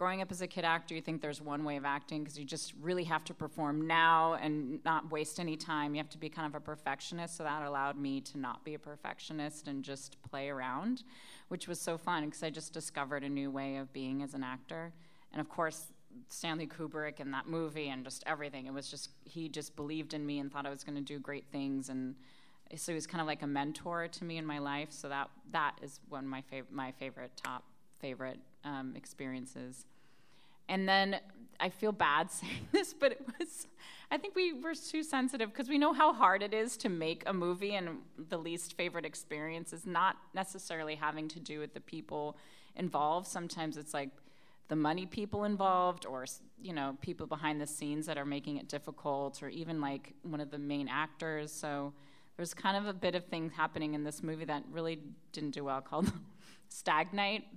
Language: English